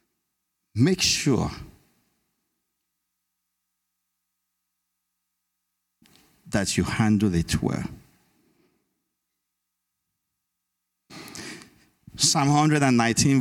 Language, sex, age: English, male, 50-69